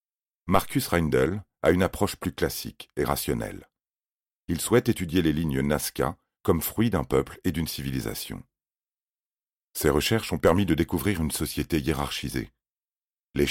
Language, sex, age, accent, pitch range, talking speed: French, male, 40-59, French, 75-95 Hz, 140 wpm